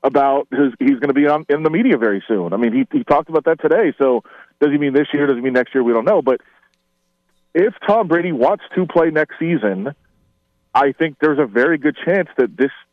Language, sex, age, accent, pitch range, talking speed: English, male, 30-49, American, 125-165 Hz, 240 wpm